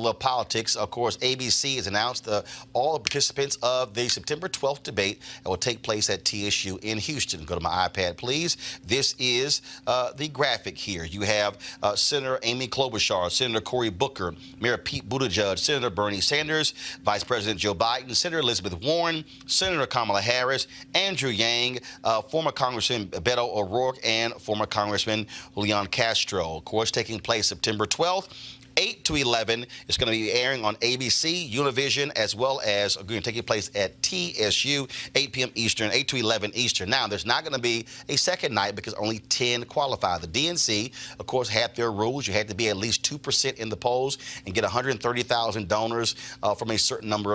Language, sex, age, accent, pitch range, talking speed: English, male, 30-49, American, 105-135 Hz, 180 wpm